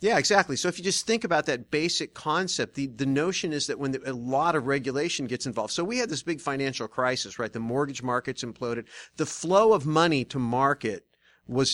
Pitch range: 120-150 Hz